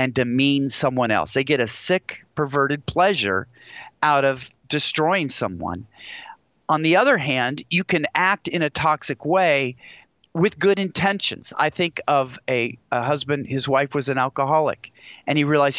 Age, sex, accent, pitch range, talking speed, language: 40-59, male, American, 135-170 Hz, 160 wpm, English